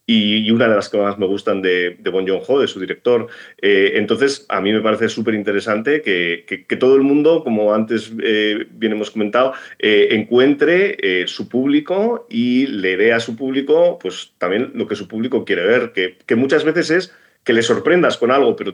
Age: 40-59